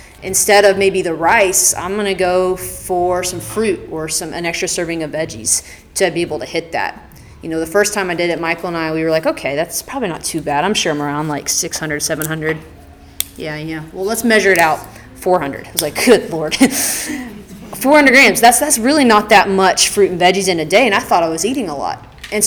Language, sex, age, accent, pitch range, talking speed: English, female, 30-49, American, 160-205 Hz, 230 wpm